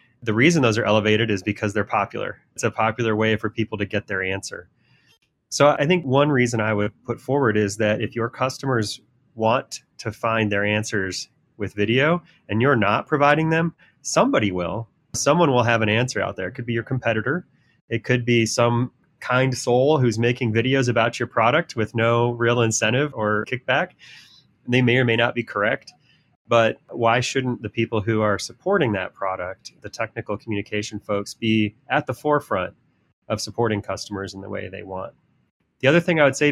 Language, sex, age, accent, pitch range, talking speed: English, male, 30-49, American, 110-125 Hz, 190 wpm